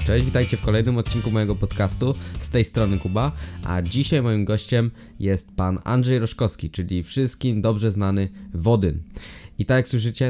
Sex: male